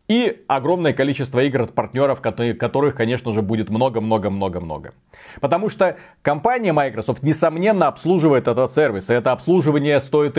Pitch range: 115-155 Hz